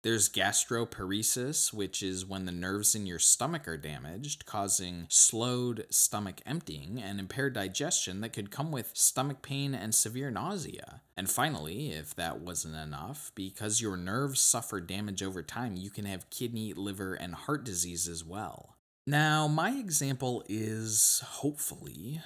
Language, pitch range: English, 90-130 Hz